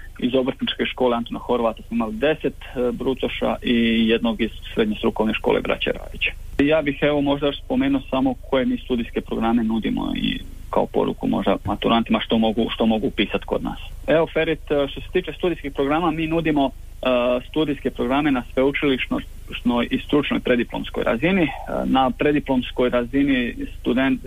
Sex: male